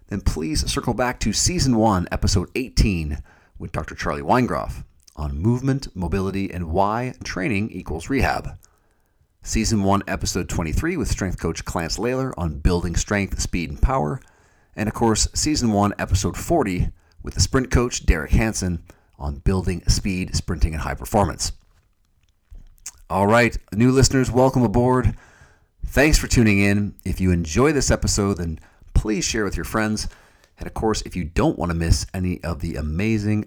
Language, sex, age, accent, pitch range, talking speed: English, male, 40-59, American, 85-105 Hz, 160 wpm